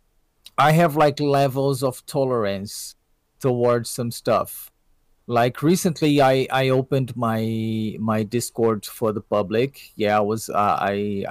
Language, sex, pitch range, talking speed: English, male, 115-150 Hz, 125 wpm